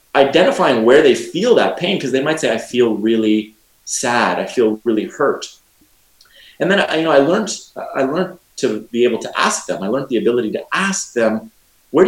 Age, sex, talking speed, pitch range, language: 30-49, male, 200 wpm, 105-165 Hz, English